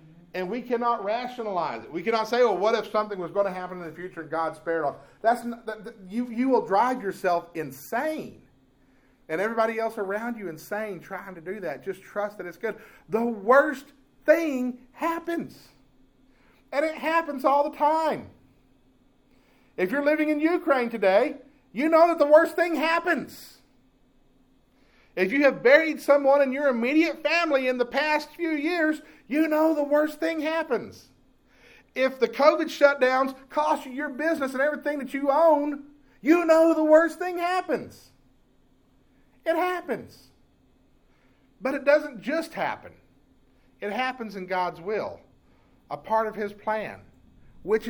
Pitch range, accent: 205-300 Hz, American